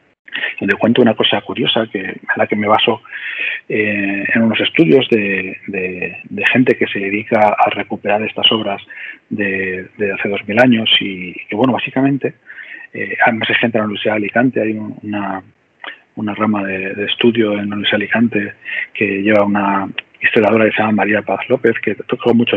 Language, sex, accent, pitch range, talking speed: Spanish, male, Spanish, 105-125 Hz, 185 wpm